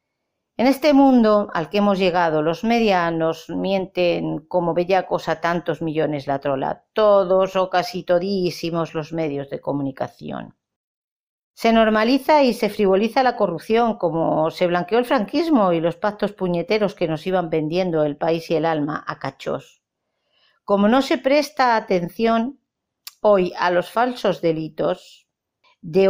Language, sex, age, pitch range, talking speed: Spanish, female, 40-59, 165-205 Hz, 145 wpm